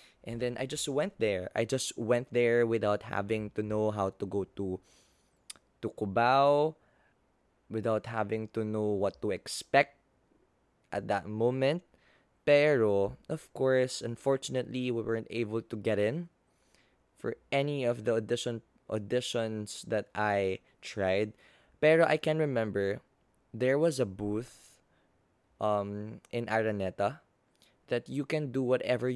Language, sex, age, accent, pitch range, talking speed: Filipino, male, 20-39, native, 105-130 Hz, 135 wpm